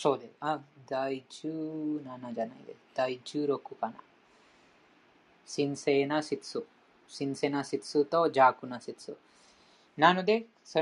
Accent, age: Indian, 20-39